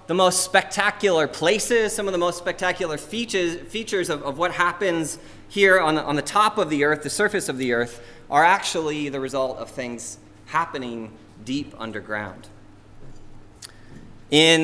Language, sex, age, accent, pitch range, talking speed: English, male, 20-39, American, 110-155 Hz, 160 wpm